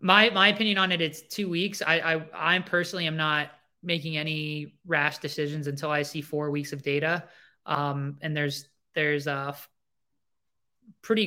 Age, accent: 20-39, American